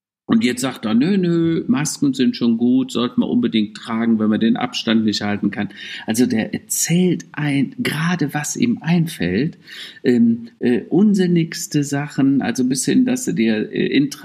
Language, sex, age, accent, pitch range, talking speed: German, male, 50-69, German, 110-175 Hz, 175 wpm